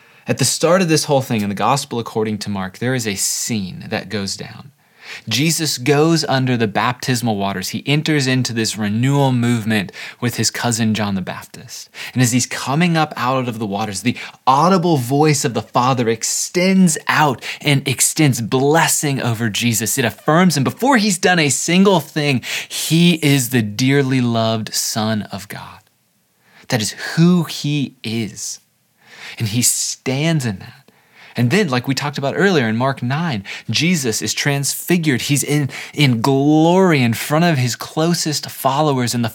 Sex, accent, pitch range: male, American, 115-150 Hz